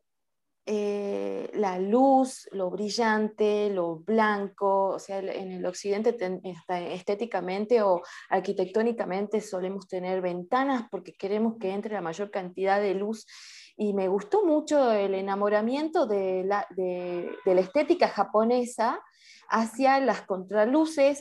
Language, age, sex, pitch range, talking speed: Spanish, 20-39, female, 190-245 Hz, 120 wpm